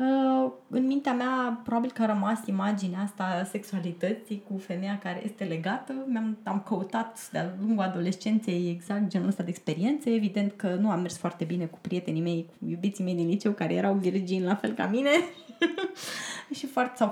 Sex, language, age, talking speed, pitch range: female, Romanian, 20-39, 175 wpm, 195-265 Hz